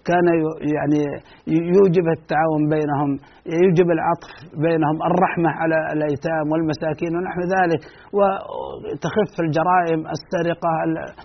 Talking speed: 90 wpm